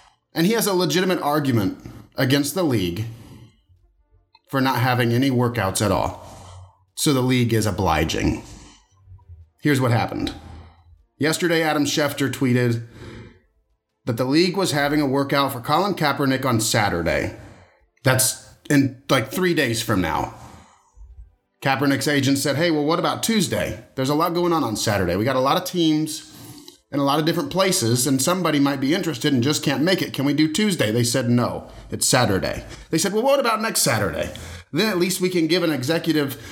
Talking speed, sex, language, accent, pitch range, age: 175 wpm, male, English, American, 100-155 Hz, 30-49